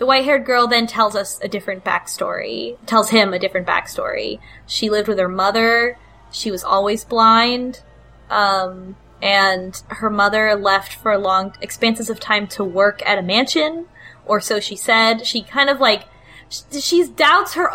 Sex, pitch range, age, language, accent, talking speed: female, 185-225 Hz, 10-29, English, American, 170 wpm